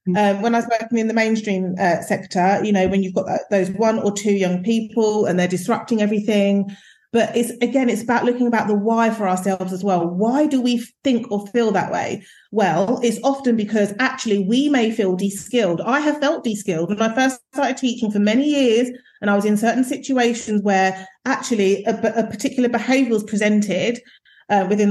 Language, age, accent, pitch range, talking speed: English, 30-49, British, 200-250 Hz, 200 wpm